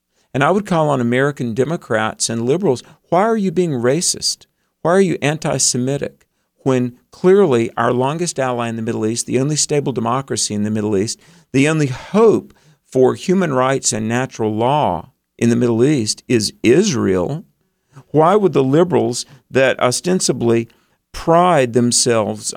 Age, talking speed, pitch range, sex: 50-69, 155 wpm, 110-145 Hz, male